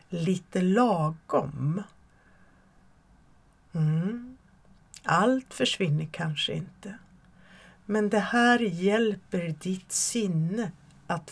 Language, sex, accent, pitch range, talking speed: Swedish, female, native, 150-205 Hz, 75 wpm